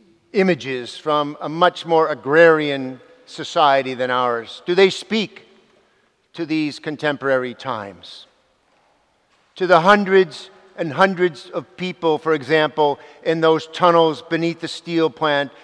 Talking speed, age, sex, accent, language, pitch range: 125 wpm, 50-69, male, American, English, 140-170 Hz